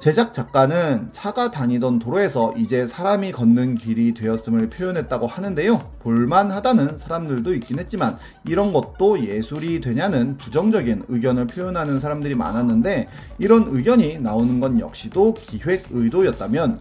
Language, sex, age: Korean, male, 30-49